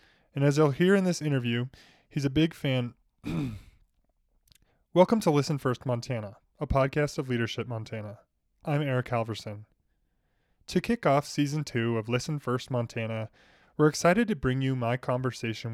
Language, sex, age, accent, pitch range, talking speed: English, male, 20-39, American, 115-155 Hz, 155 wpm